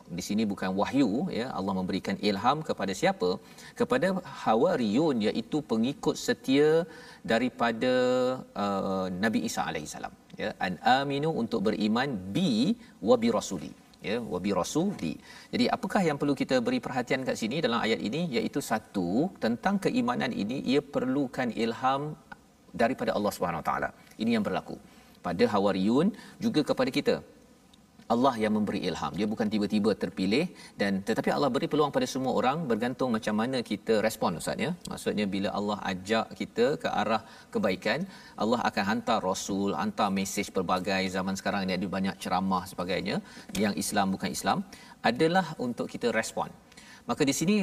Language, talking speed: Malayalam, 155 wpm